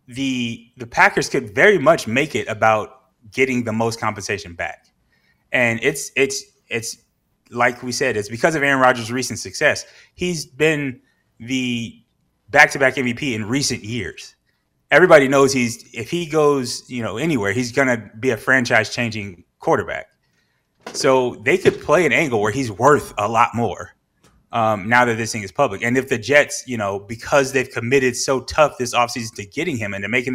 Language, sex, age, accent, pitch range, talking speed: English, male, 20-39, American, 110-130 Hz, 180 wpm